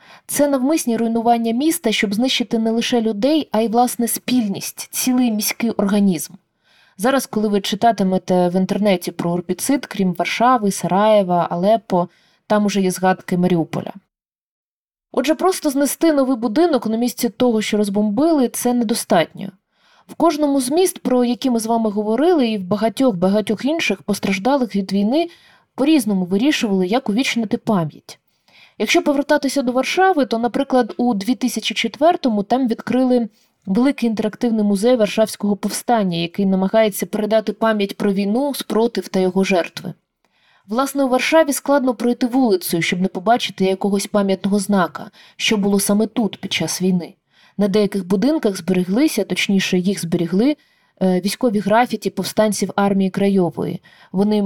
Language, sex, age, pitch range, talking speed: Ukrainian, female, 20-39, 195-250 Hz, 135 wpm